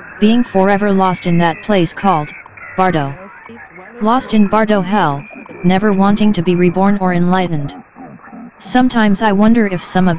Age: 40-59